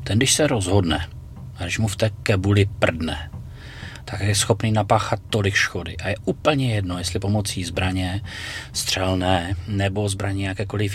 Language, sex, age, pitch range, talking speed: Czech, male, 30-49, 95-115 Hz, 155 wpm